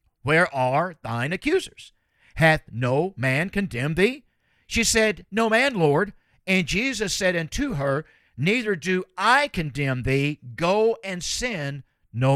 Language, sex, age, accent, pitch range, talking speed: English, male, 50-69, American, 135-190 Hz, 135 wpm